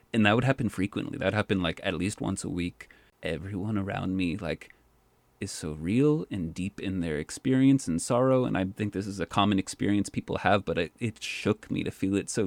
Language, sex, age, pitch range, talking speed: English, male, 30-49, 90-115 Hz, 220 wpm